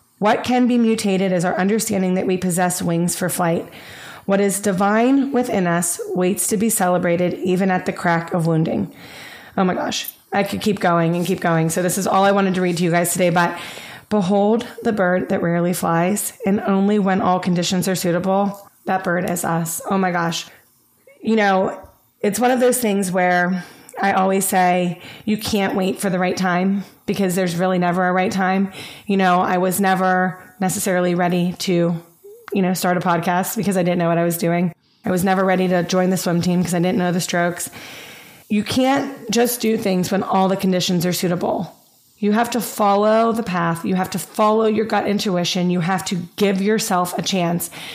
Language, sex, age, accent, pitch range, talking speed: English, female, 30-49, American, 180-205 Hz, 205 wpm